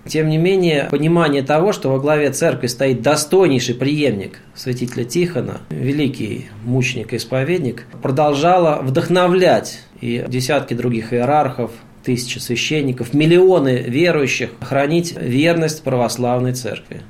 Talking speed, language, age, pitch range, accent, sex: 110 wpm, Russian, 20-39, 125-155 Hz, native, male